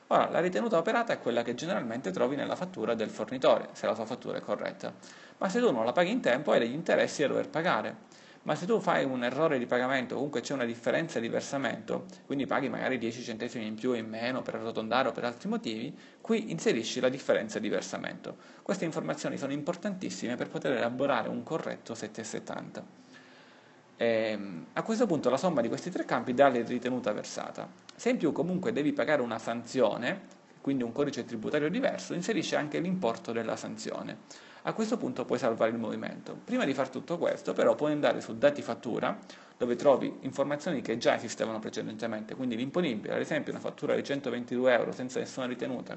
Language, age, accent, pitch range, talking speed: Italian, 30-49, native, 120-175 Hz, 195 wpm